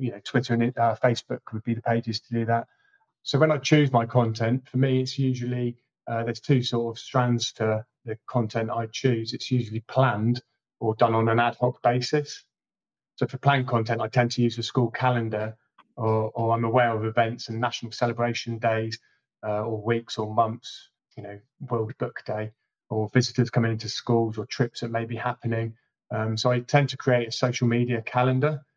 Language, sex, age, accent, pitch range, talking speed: English, male, 30-49, British, 115-130 Hz, 200 wpm